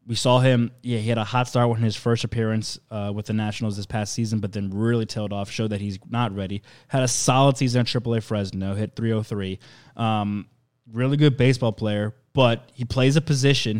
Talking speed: 215 wpm